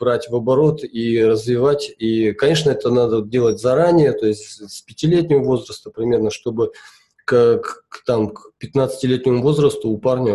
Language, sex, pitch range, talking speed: Russian, male, 110-160 Hz, 150 wpm